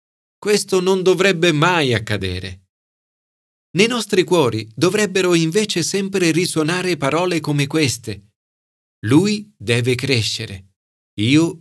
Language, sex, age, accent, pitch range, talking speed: Italian, male, 40-59, native, 100-160 Hz, 100 wpm